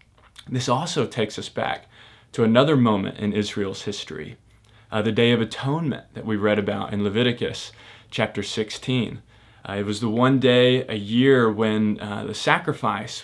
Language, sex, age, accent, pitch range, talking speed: English, male, 20-39, American, 105-130 Hz, 165 wpm